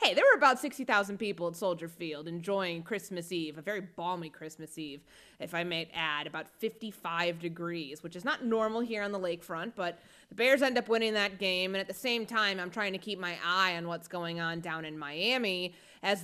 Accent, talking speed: American, 220 wpm